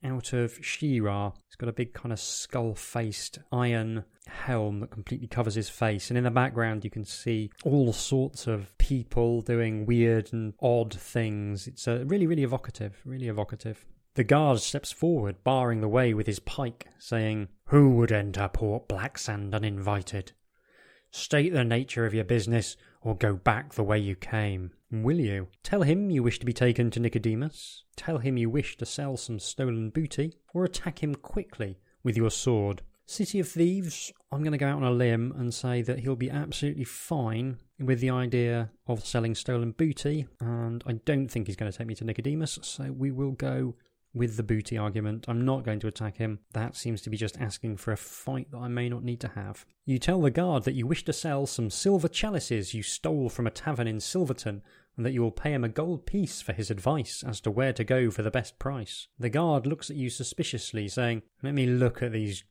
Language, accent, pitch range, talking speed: English, British, 110-135 Hz, 205 wpm